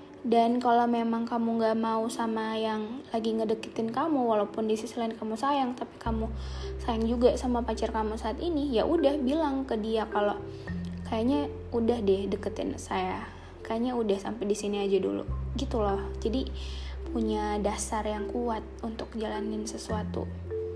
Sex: female